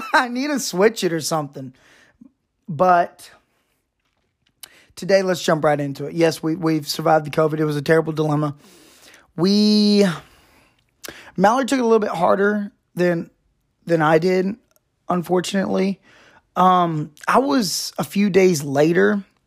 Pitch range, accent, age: 150-190 Hz, American, 20-39